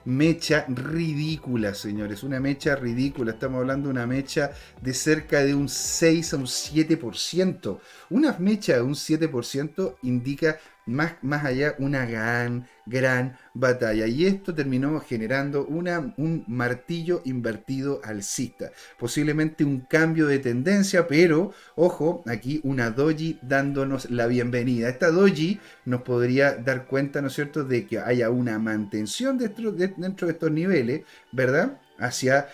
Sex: male